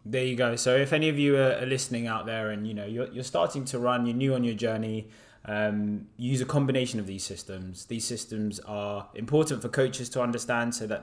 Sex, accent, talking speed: male, British, 230 wpm